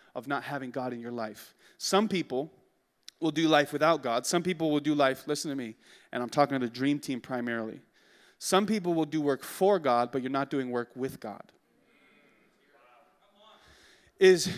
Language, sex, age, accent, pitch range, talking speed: English, male, 30-49, American, 140-210 Hz, 185 wpm